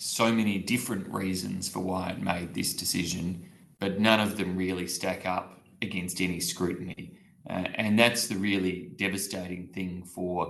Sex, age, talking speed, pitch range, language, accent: male, 20-39, 160 wpm, 95-115 Hz, Greek, Australian